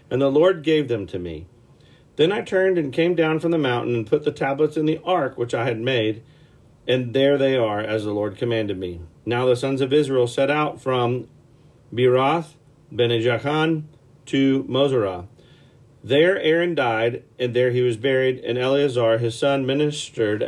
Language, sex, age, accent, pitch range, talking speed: English, male, 40-59, American, 115-145 Hz, 180 wpm